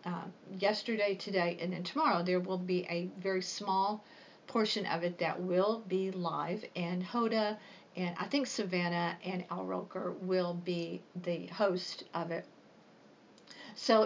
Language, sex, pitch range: English, female, 180-225 Hz